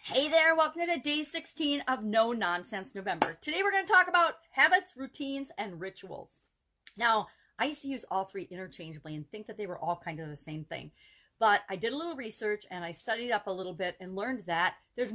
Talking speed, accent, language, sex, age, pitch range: 220 wpm, American, English, female, 40-59, 185-255 Hz